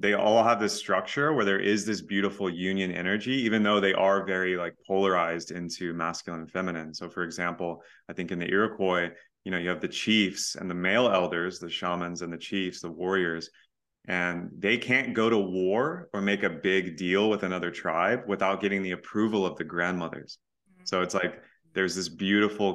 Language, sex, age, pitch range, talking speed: English, male, 30-49, 85-100 Hz, 200 wpm